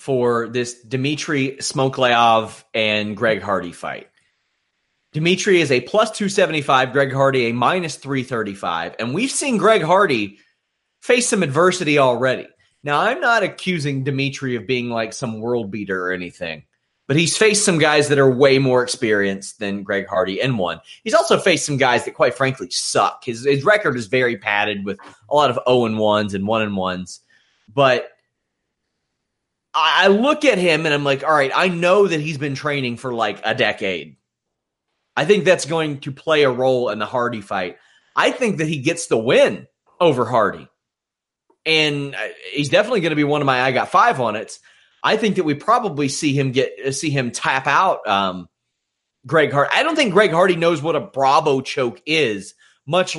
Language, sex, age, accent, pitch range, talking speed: English, male, 30-49, American, 120-165 Hz, 180 wpm